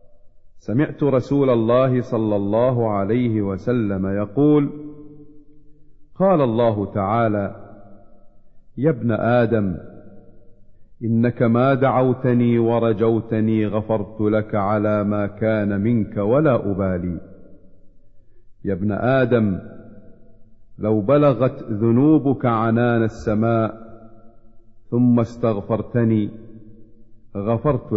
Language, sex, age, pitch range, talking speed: Arabic, male, 50-69, 105-130 Hz, 80 wpm